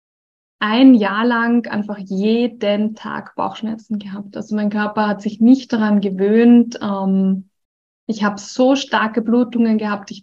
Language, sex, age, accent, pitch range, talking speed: German, female, 20-39, German, 205-235 Hz, 135 wpm